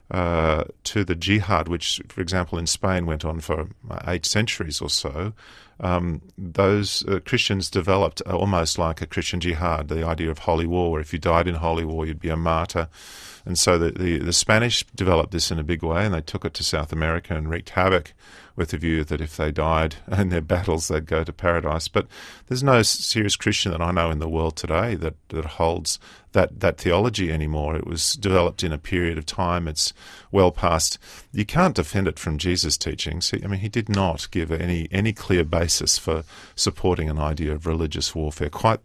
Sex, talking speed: male, 205 wpm